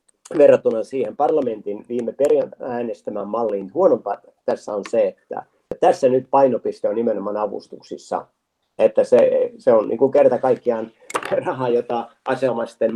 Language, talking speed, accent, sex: Finnish, 135 wpm, native, male